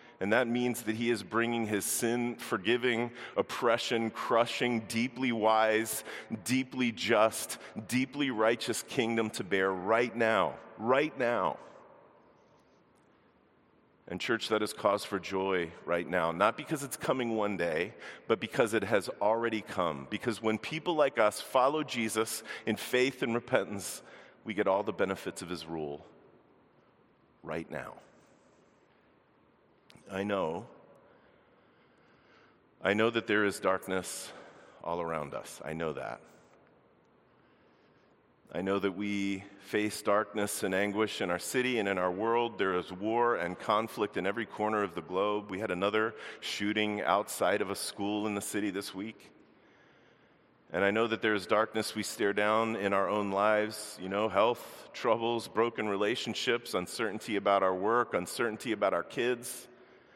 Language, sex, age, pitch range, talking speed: English, male, 40-59, 100-115 Hz, 150 wpm